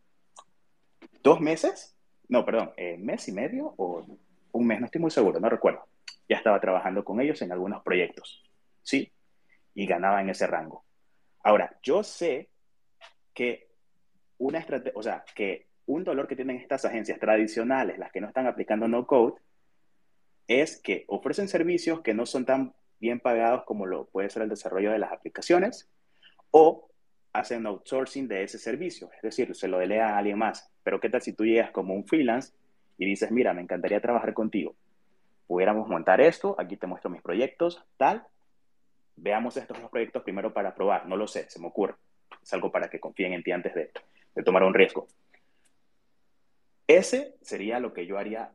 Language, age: Spanish, 30-49